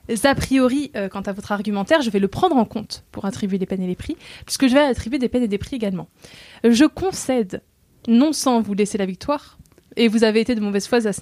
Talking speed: 250 wpm